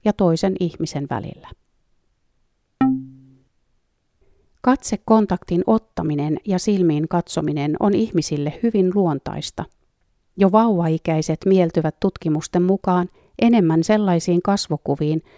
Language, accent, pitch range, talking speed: Finnish, native, 155-195 Hz, 80 wpm